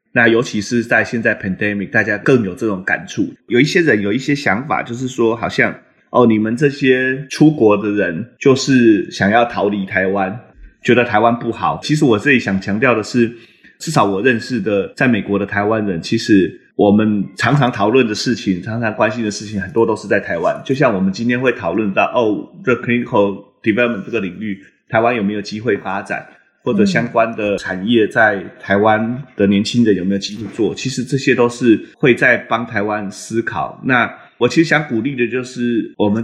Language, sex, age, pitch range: Chinese, male, 20-39, 100-120 Hz